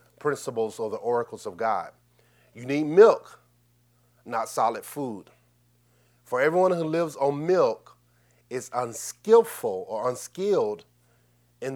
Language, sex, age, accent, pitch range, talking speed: English, male, 40-59, American, 115-150 Hz, 115 wpm